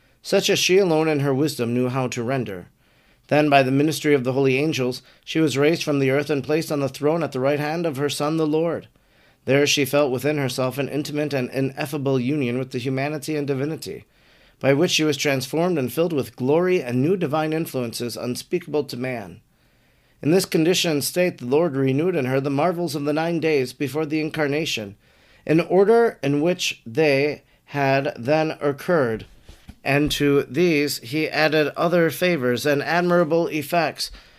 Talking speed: 185 wpm